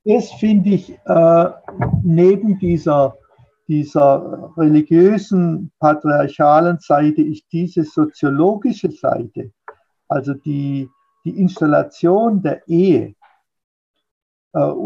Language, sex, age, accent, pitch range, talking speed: German, male, 60-79, German, 145-180 Hz, 85 wpm